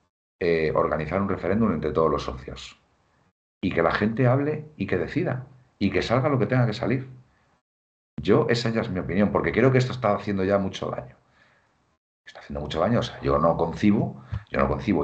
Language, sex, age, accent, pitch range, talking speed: Spanish, male, 50-69, Spanish, 80-125 Hz, 205 wpm